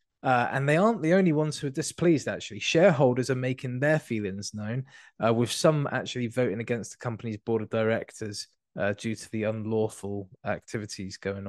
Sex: male